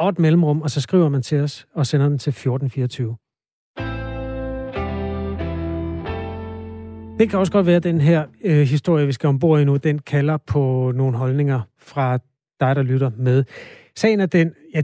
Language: Danish